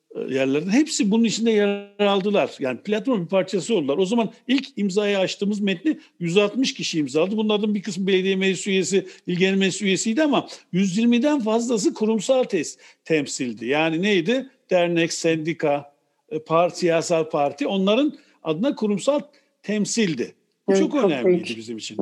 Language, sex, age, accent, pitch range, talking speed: Turkish, male, 60-79, native, 160-235 Hz, 130 wpm